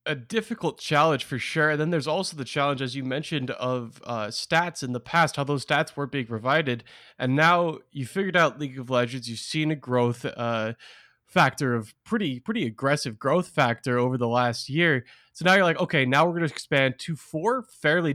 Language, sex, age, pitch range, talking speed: English, male, 20-39, 125-155 Hz, 210 wpm